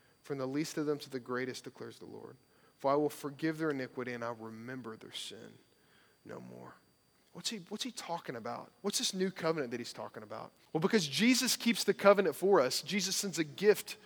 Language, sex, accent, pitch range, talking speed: English, male, American, 155-205 Hz, 215 wpm